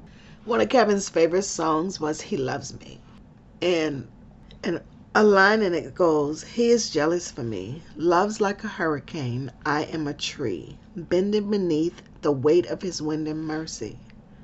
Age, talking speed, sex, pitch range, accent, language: 50-69, 160 wpm, female, 135-170 Hz, American, English